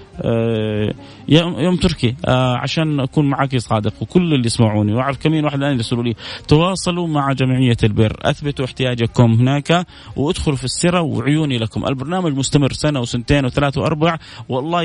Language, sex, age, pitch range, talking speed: Arabic, male, 30-49, 120-160 Hz, 140 wpm